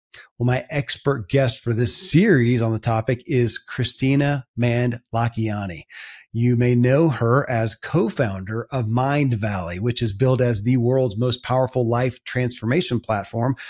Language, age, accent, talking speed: English, 40-59, American, 150 wpm